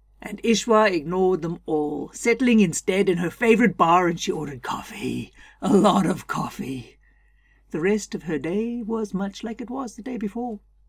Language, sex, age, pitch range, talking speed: English, female, 60-79, 170-215 Hz, 175 wpm